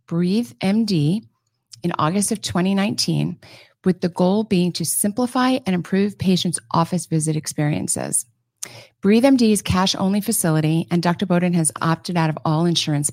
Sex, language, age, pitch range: female, English, 40-59, 155-195 Hz